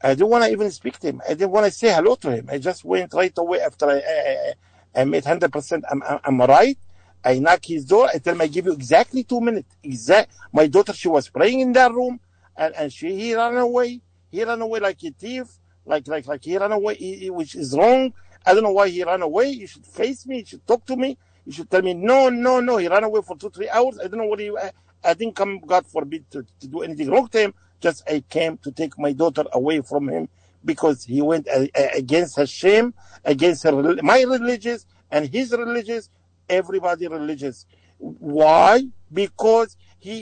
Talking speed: 230 wpm